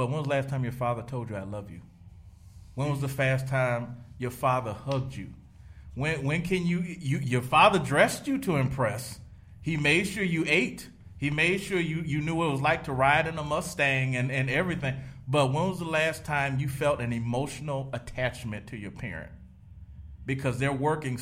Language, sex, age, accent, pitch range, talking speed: English, male, 40-59, American, 115-145 Hz, 205 wpm